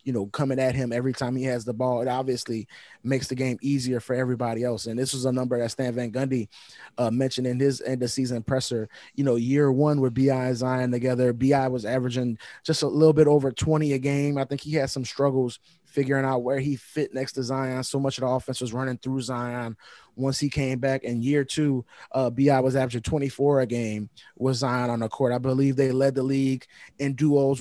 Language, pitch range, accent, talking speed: English, 125-140 Hz, American, 235 wpm